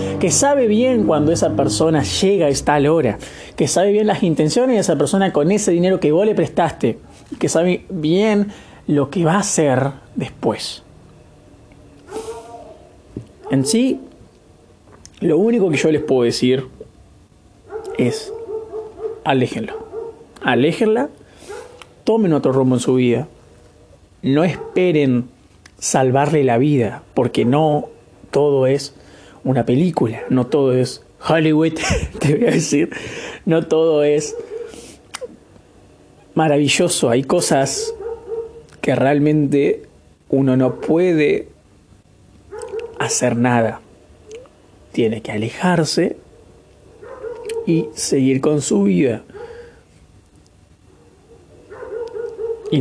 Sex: male